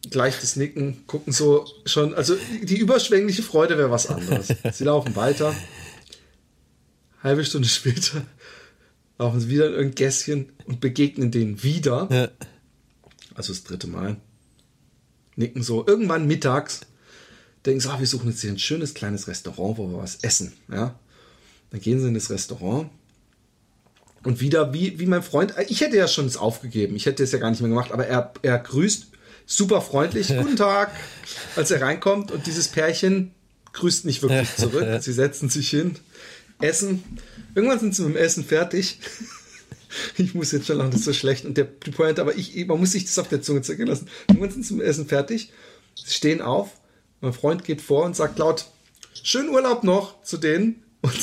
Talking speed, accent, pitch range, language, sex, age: 180 wpm, German, 130-190 Hz, German, male, 40-59